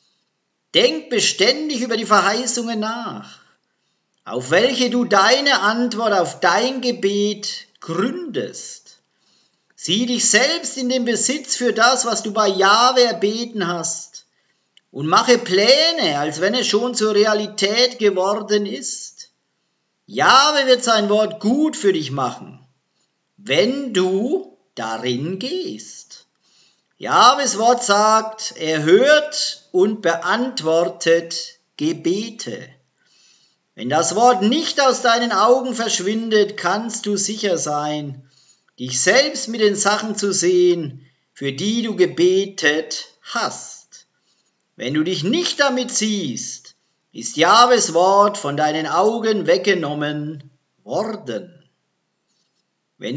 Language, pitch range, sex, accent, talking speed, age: German, 180-245 Hz, male, German, 110 wpm, 50-69